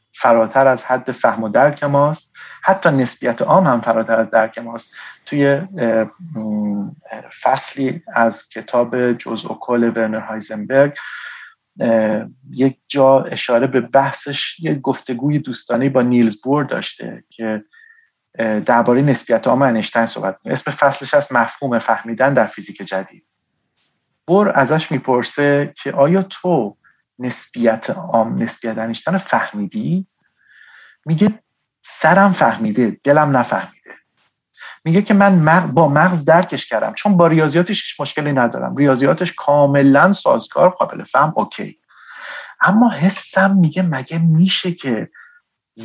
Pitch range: 115-175 Hz